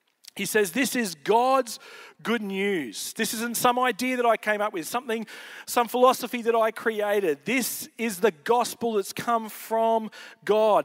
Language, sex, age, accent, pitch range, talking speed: English, male, 40-59, Australian, 210-250 Hz, 165 wpm